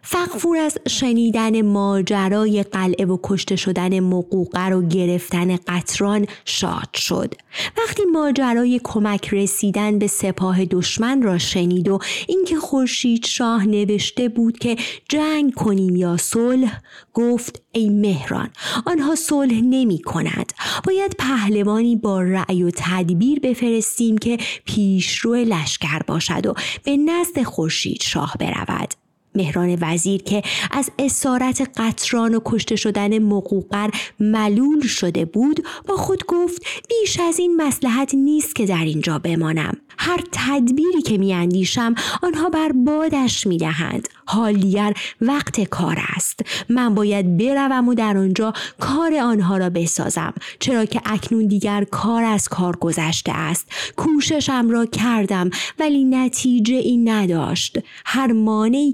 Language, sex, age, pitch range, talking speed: Persian, female, 30-49, 190-260 Hz, 130 wpm